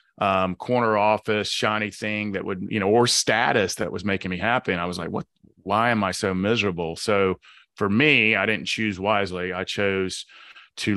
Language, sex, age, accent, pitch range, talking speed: English, male, 30-49, American, 90-105 Hz, 195 wpm